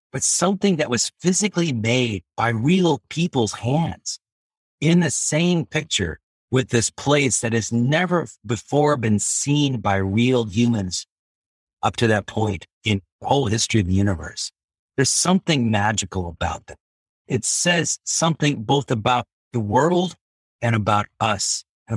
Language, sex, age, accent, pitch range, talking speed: English, male, 50-69, American, 100-130 Hz, 145 wpm